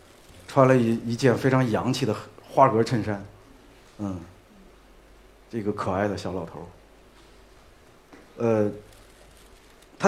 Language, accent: Chinese, native